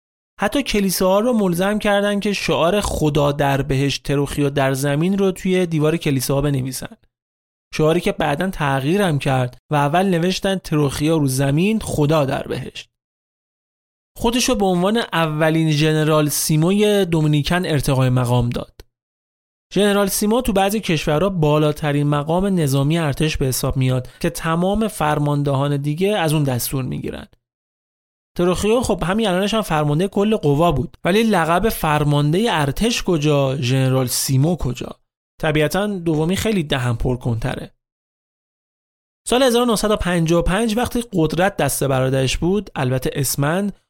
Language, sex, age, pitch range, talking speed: Persian, male, 30-49, 140-190 Hz, 125 wpm